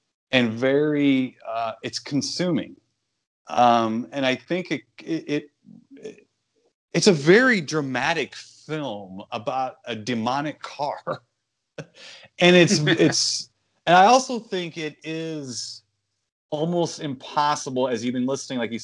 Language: English